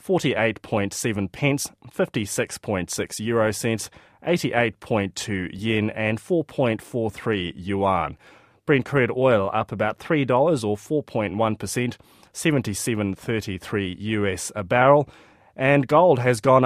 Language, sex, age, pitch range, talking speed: English, male, 30-49, 100-130 Hz, 90 wpm